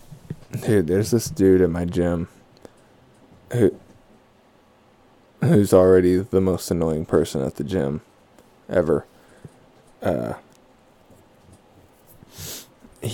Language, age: English, 20-39